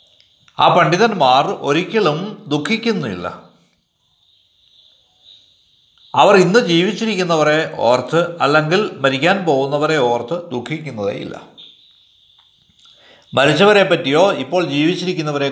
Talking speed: 65 wpm